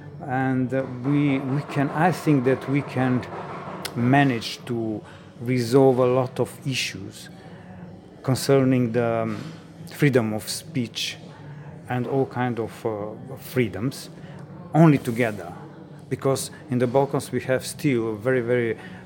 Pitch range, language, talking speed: 120-150 Hz, English, 125 wpm